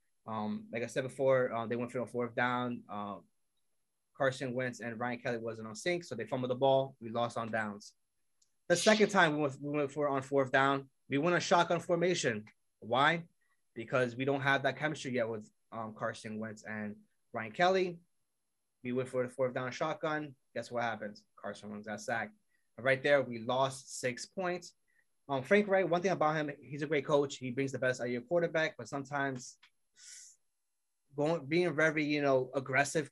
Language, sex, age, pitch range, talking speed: English, male, 20-39, 120-160 Hz, 200 wpm